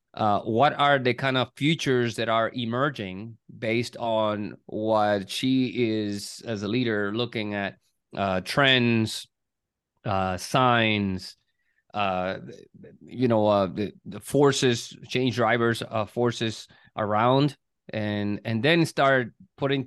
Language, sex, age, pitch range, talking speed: English, male, 30-49, 100-120 Hz, 125 wpm